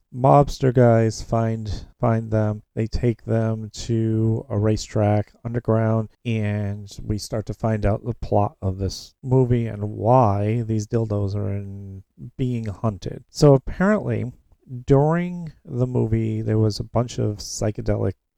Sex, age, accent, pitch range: male, 40-59, American, 105-120 Hz